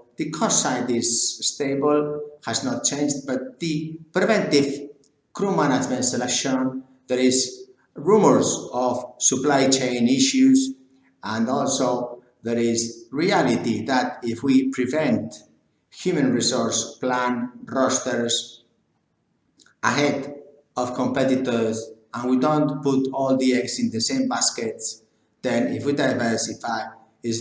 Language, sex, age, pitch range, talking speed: English, male, 50-69, 115-145 Hz, 115 wpm